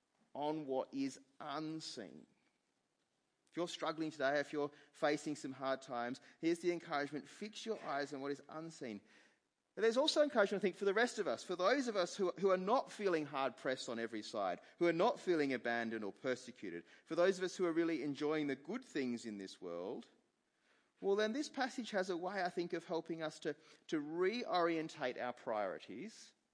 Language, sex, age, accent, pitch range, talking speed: English, male, 30-49, Australian, 140-200 Hz, 195 wpm